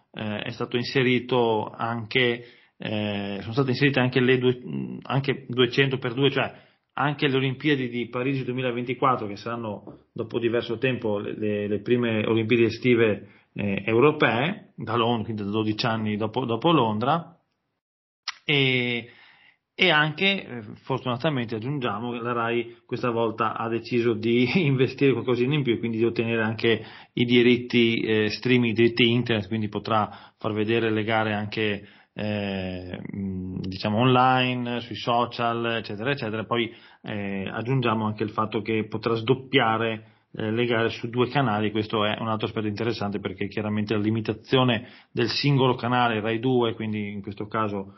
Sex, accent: male, native